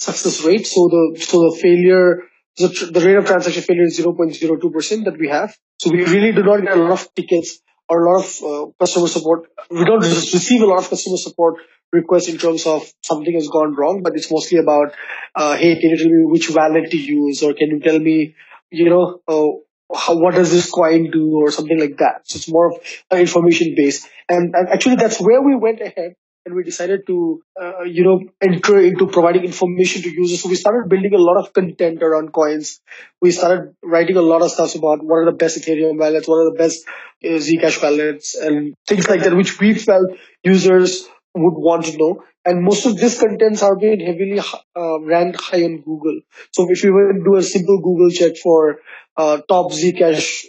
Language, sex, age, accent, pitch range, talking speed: English, male, 20-39, Indian, 160-185 Hz, 215 wpm